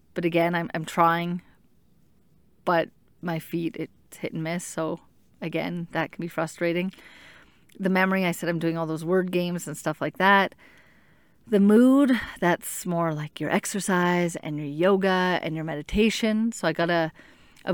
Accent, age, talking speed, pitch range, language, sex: American, 30-49, 170 wpm, 165-195 Hz, English, female